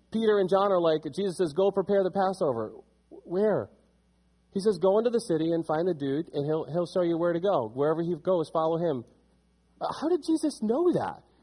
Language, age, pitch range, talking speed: English, 30-49, 130-185 Hz, 210 wpm